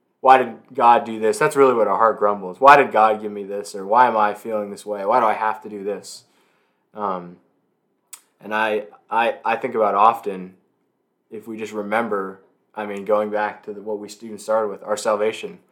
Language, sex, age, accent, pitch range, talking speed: English, male, 20-39, American, 105-145 Hz, 215 wpm